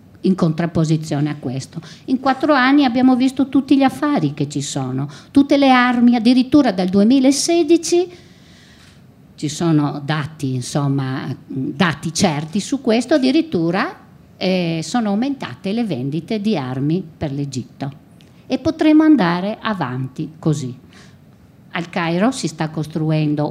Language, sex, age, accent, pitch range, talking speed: Italian, female, 50-69, native, 150-220 Hz, 125 wpm